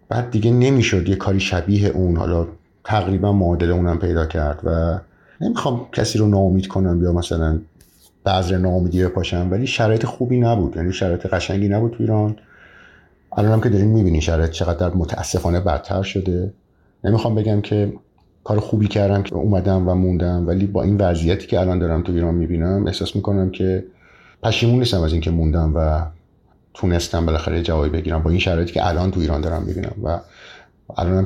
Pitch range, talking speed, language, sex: 85-105 Hz, 165 wpm, Persian, male